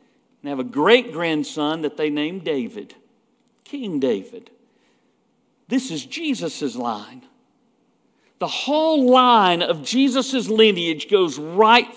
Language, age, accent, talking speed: English, 50-69, American, 110 wpm